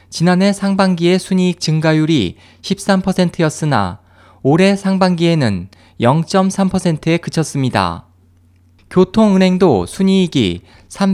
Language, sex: Korean, male